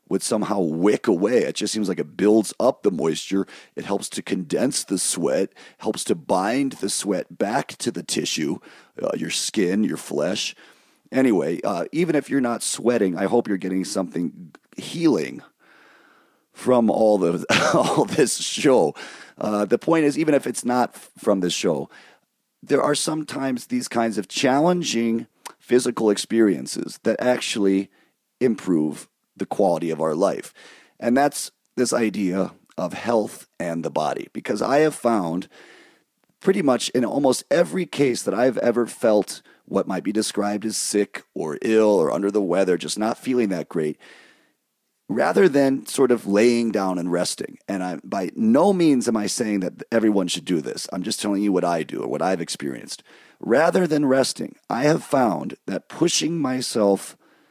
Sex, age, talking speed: male, 40-59, 170 wpm